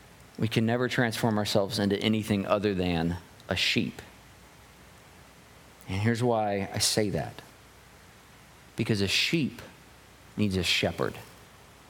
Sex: male